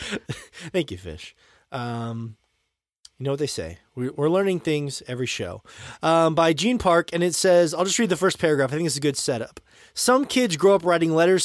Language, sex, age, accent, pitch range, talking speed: English, male, 20-39, American, 150-200 Hz, 205 wpm